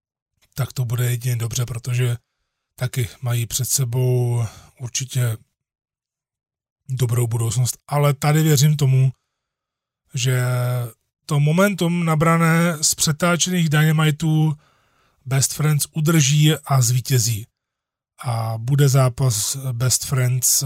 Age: 20-39